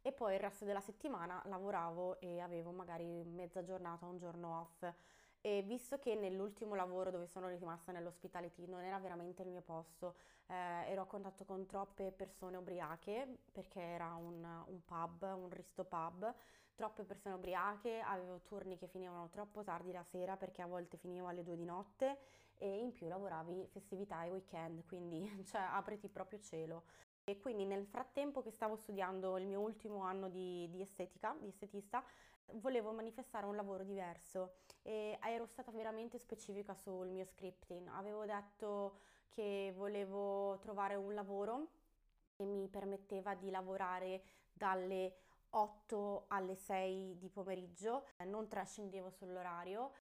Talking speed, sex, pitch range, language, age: 150 wpm, female, 180-205 Hz, Italian, 20-39